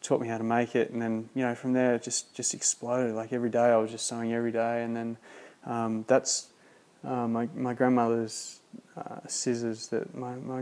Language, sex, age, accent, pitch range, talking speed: English, male, 20-39, Australian, 115-130 Hz, 215 wpm